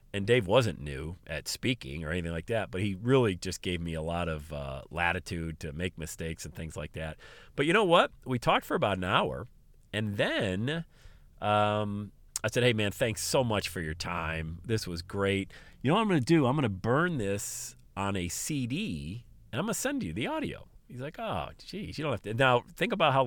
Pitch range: 85-120 Hz